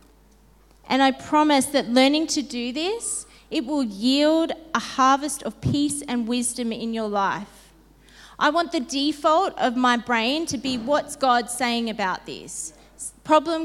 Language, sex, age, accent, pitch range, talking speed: English, female, 30-49, Australian, 230-300 Hz, 155 wpm